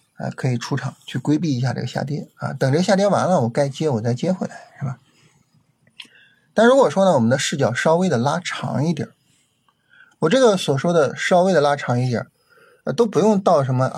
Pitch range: 120-175 Hz